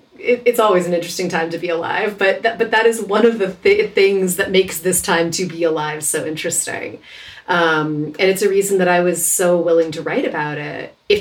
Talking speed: 225 wpm